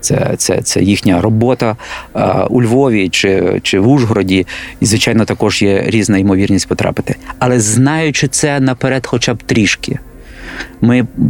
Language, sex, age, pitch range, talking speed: Ukrainian, male, 40-59, 105-130 Hz, 145 wpm